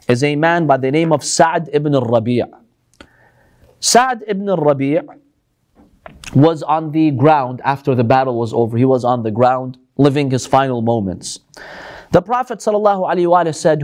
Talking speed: 150 wpm